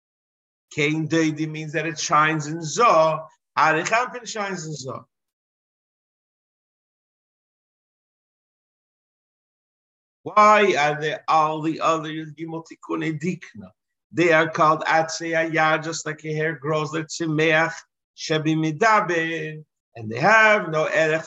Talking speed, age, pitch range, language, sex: 95 wpm, 50-69, 155-180 Hz, English, male